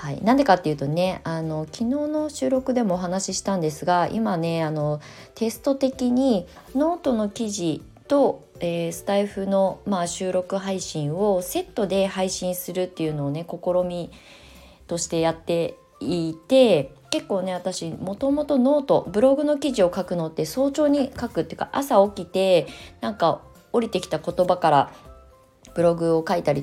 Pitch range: 150-200 Hz